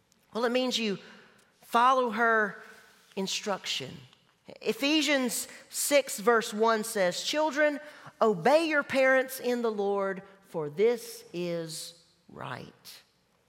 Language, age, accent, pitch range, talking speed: English, 40-59, American, 170-250 Hz, 100 wpm